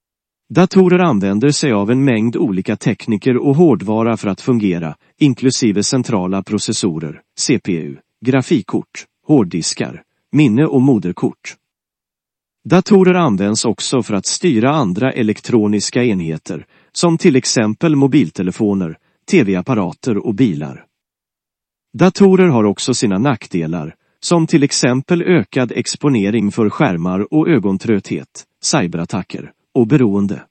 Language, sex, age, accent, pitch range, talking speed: Swedish, male, 40-59, native, 100-140 Hz, 105 wpm